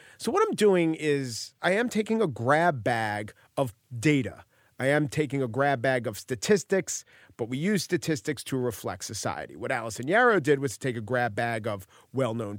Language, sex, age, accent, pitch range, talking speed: English, male, 40-59, American, 115-150 Hz, 190 wpm